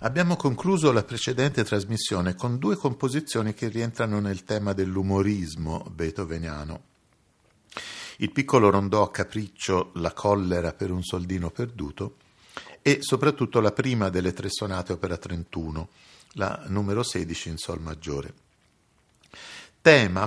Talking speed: 120 wpm